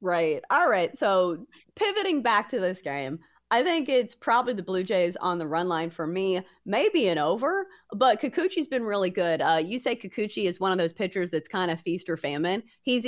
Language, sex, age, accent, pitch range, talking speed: English, female, 30-49, American, 170-245 Hz, 215 wpm